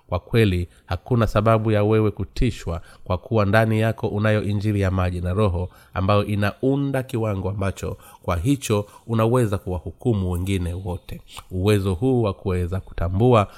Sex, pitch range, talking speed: male, 90-110 Hz, 145 wpm